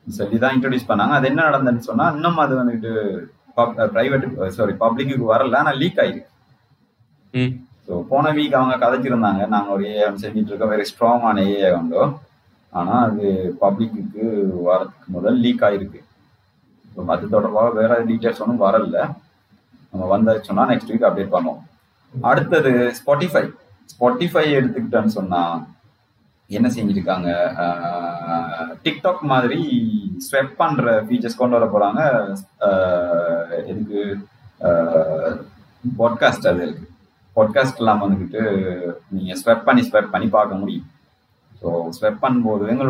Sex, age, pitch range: male, 30-49, 95-125 Hz